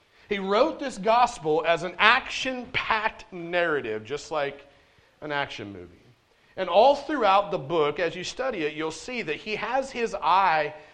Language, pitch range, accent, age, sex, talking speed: English, 160-210 Hz, American, 40-59, male, 160 wpm